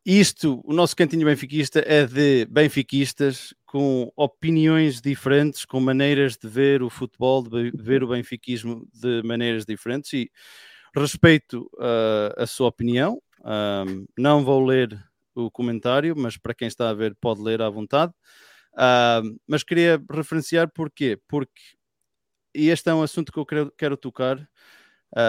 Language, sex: English, male